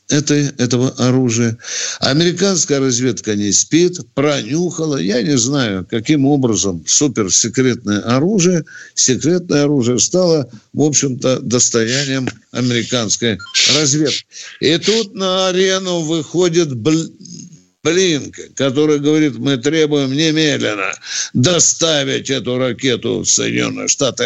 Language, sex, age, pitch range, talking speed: Russian, male, 60-79, 115-155 Hz, 95 wpm